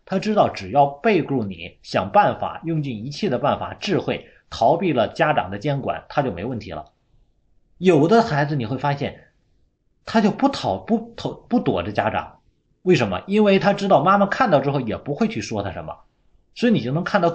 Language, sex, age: Chinese, male, 30-49